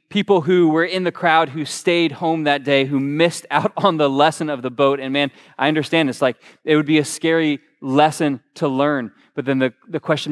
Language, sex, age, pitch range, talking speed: English, male, 20-39, 150-215 Hz, 225 wpm